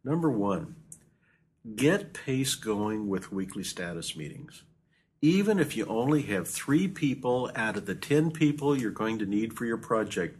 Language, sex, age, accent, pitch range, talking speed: English, male, 50-69, American, 105-155 Hz, 160 wpm